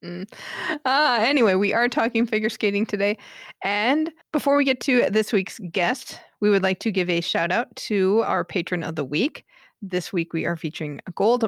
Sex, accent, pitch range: female, American, 170-215 Hz